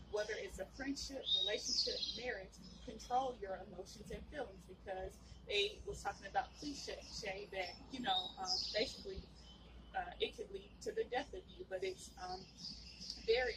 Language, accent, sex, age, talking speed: English, American, female, 20-39, 155 wpm